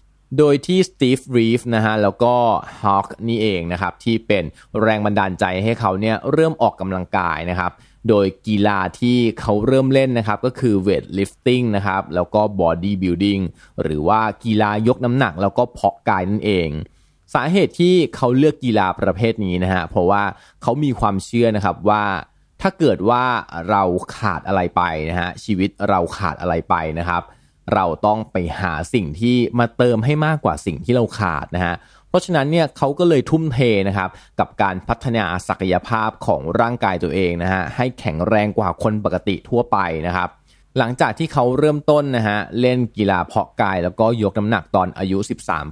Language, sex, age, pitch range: Thai, male, 20-39, 90-120 Hz